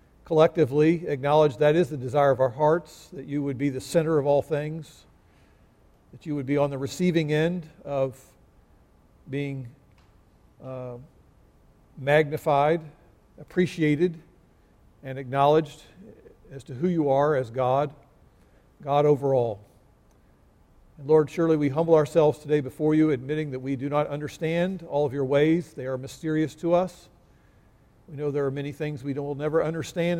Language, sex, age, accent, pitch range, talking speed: English, male, 50-69, American, 135-160 Hz, 150 wpm